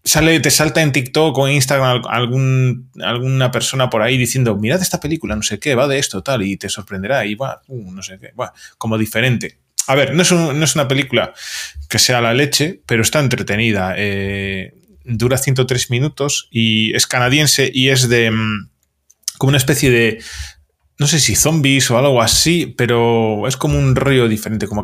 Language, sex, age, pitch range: Spanish, male, 20-39, 110-135 Hz